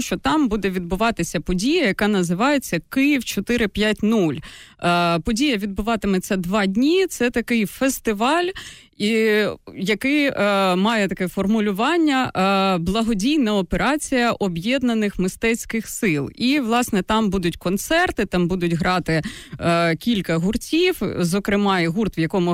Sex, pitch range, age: female, 175-235 Hz, 20-39